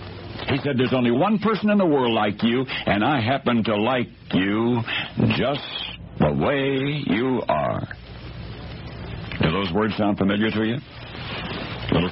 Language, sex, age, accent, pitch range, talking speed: English, male, 60-79, American, 85-125 Hz, 150 wpm